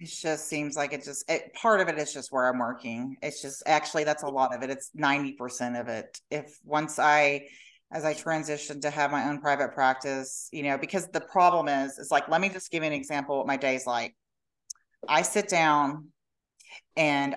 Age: 40-59